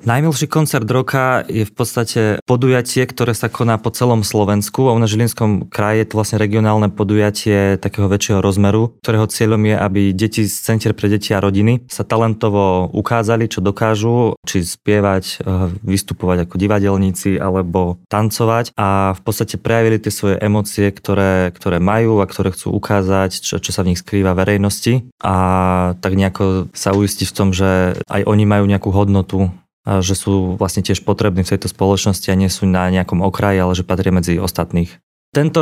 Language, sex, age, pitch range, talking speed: Slovak, male, 20-39, 95-110 Hz, 175 wpm